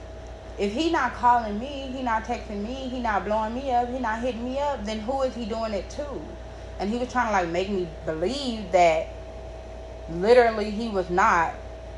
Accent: American